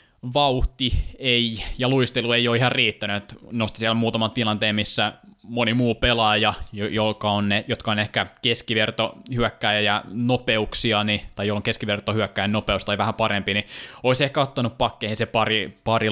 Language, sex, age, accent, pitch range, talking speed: Finnish, male, 20-39, native, 105-120 Hz, 165 wpm